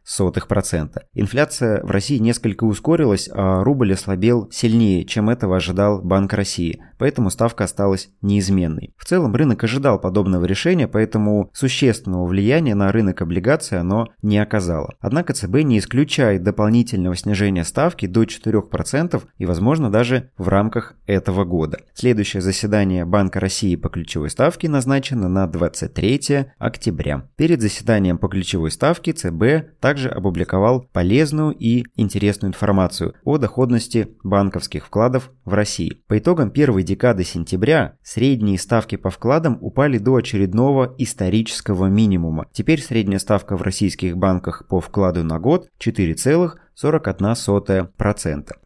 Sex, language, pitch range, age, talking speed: male, Russian, 95-125 Hz, 30-49, 130 wpm